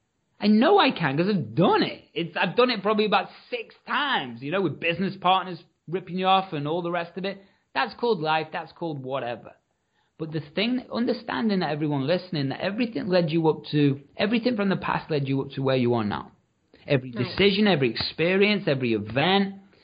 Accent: British